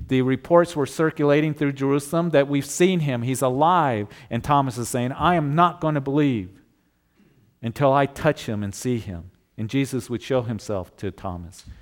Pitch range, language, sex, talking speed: 105-155 Hz, English, male, 185 wpm